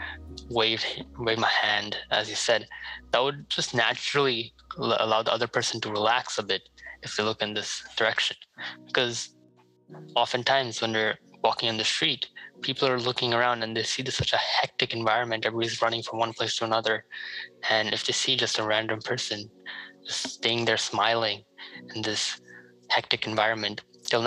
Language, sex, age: English, male, 20-39